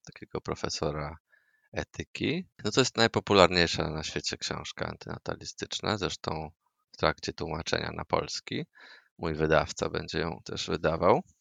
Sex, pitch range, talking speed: male, 85-105 Hz, 120 wpm